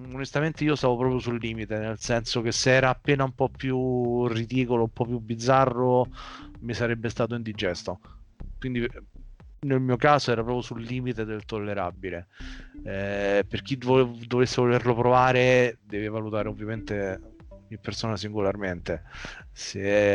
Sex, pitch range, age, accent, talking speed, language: male, 100-125 Hz, 30-49, native, 140 wpm, Italian